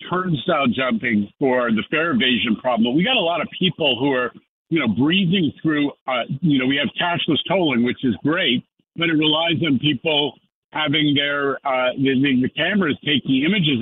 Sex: male